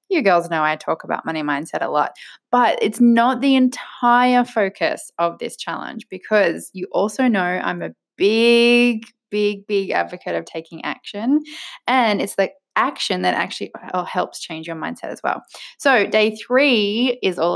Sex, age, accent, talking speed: female, 20-39, Australian, 170 wpm